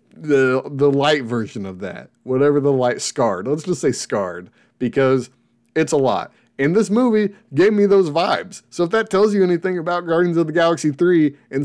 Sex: male